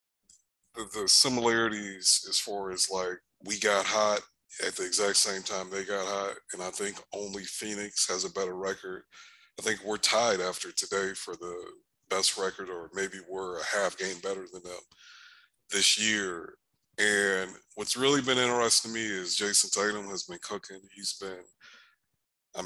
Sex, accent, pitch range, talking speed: male, American, 95-110 Hz, 165 wpm